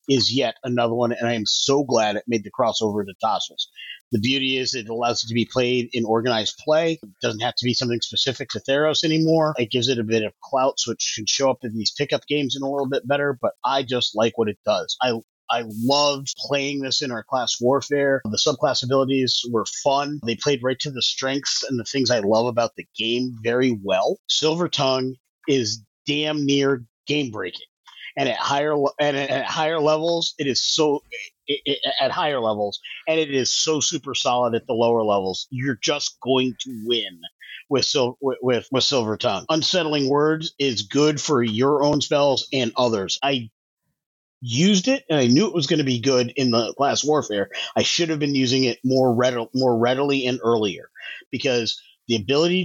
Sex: male